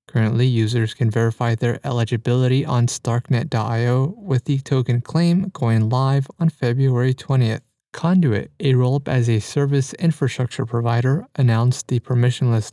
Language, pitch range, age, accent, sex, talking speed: English, 120-140 Hz, 20-39, American, male, 125 wpm